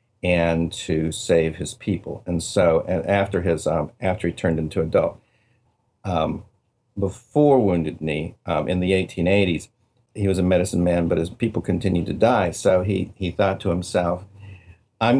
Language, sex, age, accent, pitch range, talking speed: English, male, 50-69, American, 85-105 Hz, 170 wpm